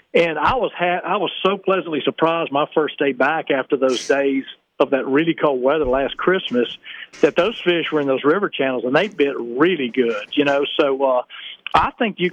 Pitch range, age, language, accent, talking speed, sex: 135-170 Hz, 40-59, English, American, 210 wpm, male